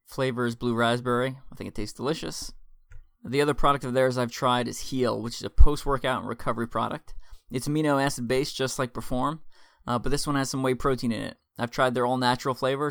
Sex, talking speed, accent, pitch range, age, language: male, 215 wpm, American, 120-135 Hz, 20-39, English